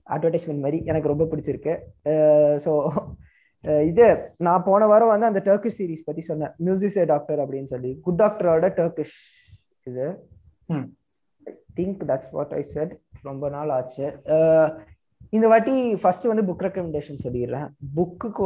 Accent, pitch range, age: native, 150-215 Hz, 20-39